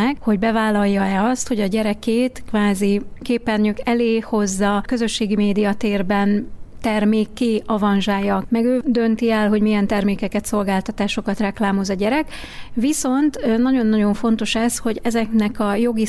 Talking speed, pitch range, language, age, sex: 130 wpm, 205-240 Hz, Hungarian, 30-49, female